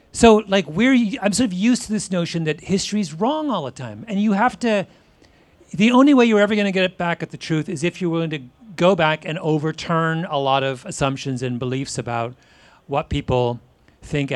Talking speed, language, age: 215 wpm, English, 40-59